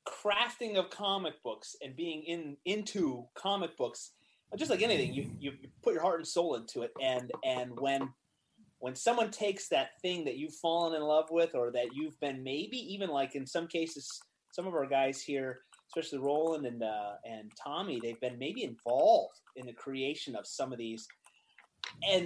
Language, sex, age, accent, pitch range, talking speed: English, male, 30-49, American, 130-200 Hz, 185 wpm